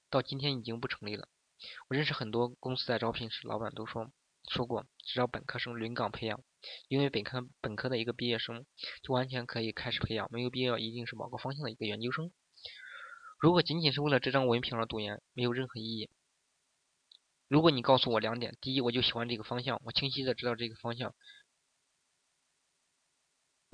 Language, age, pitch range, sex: Chinese, 20-39, 115-135 Hz, male